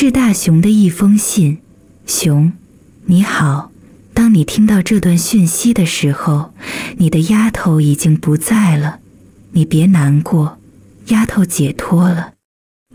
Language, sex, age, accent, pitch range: Chinese, female, 20-39, native, 155-210 Hz